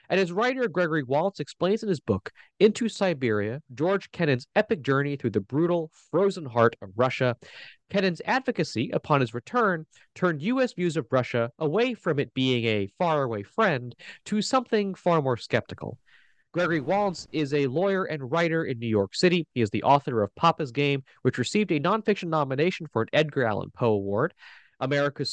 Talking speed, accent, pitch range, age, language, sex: 175 wpm, American, 125-190 Hz, 30-49, English, male